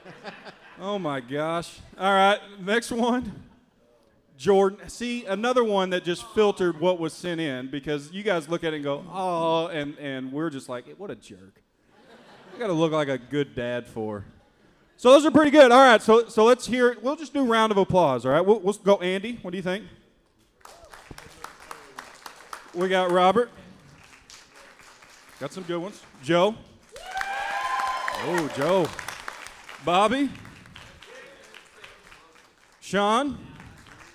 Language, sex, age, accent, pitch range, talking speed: English, male, 40-59, American, 160-225 Hz, 150 wpm